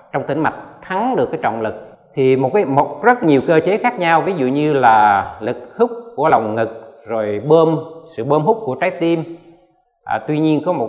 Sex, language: male, Vietnamese